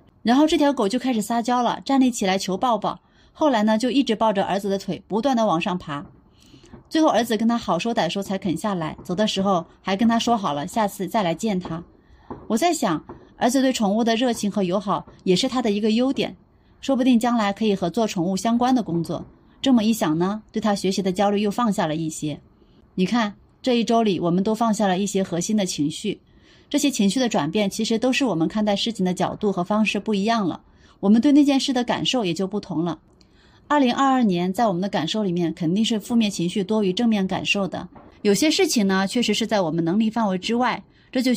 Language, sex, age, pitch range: Chinese, female, 30-49, 185-240 Hz